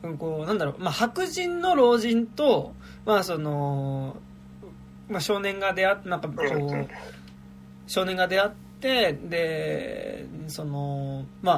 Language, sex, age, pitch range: Japanese, male, 20-39, 135-225 Hz